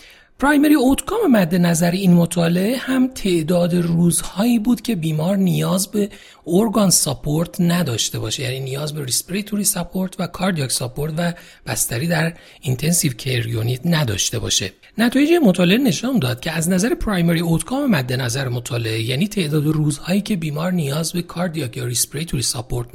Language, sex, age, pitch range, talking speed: Persian, male, 40-59, 130-195 Hz, 145 wpm